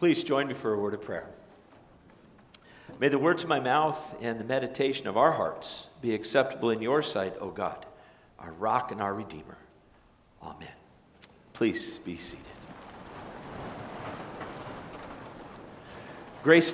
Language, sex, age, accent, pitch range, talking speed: English, male, 50-69, American, 100-115 Hz, 135 wpm